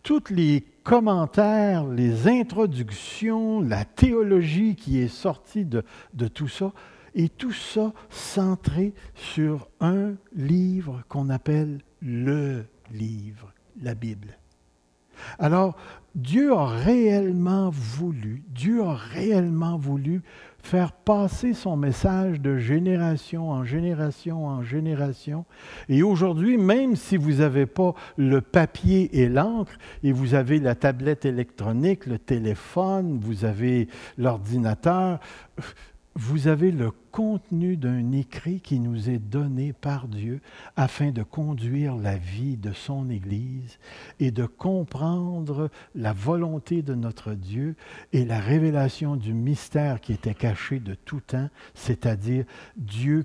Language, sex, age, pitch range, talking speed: French, male, 60-79, 115-170 Hz, 125 wpm